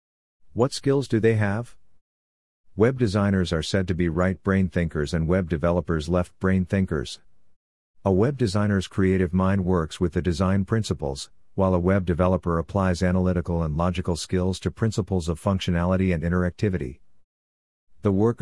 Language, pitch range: English, 80-100 Hz